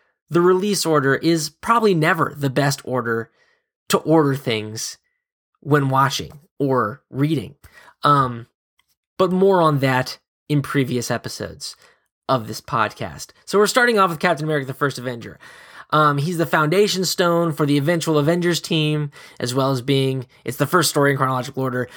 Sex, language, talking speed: male, English, 160 wpm